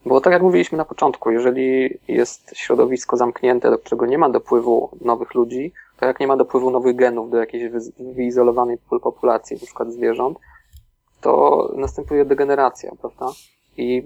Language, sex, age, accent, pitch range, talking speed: Polish, male, 20-39, native, 125-160 Hz, 150 wpm